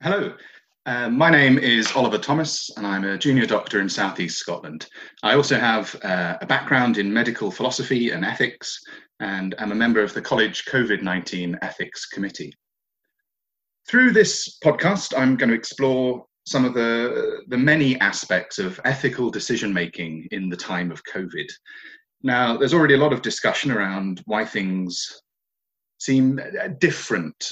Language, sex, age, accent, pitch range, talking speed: English, male, 30-49, British, 100-135 Hz, 155 wpm